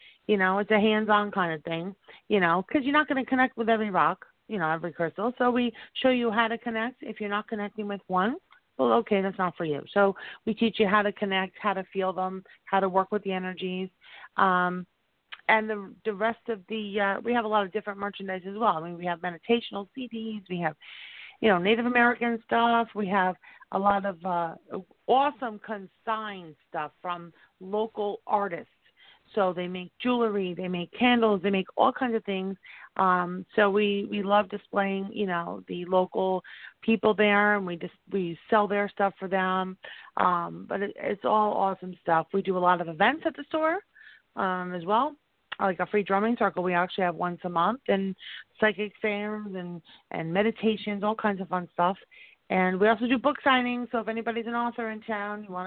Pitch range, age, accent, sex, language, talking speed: 185-225 Hz, 40-59, American, female, English, 205 wpm